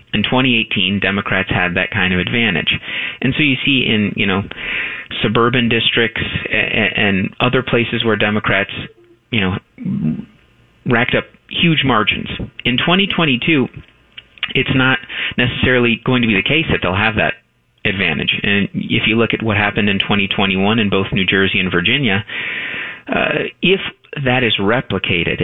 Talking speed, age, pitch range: 150 wpm, 30-49, 95-120 Hz